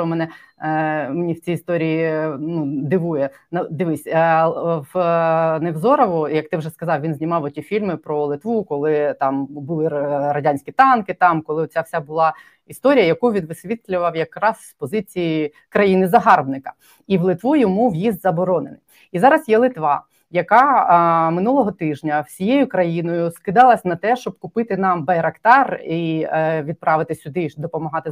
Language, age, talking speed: Ukrainian, 20-39, 150 wpm